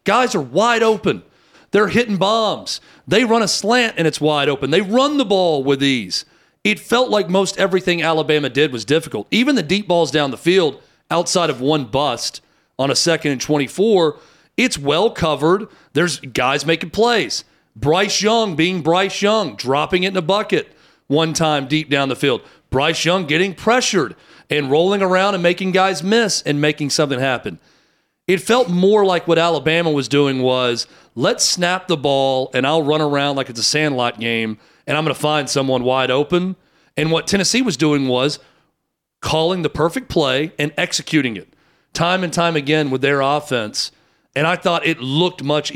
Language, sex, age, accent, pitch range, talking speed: English, male, 40-59, American, 140-185 Hz, 185 wpm